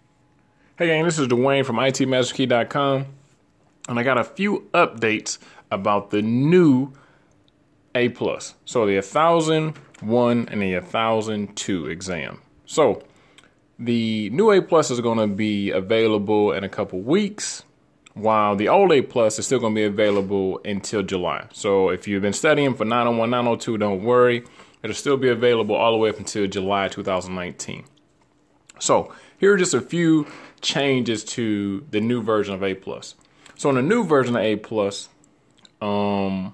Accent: American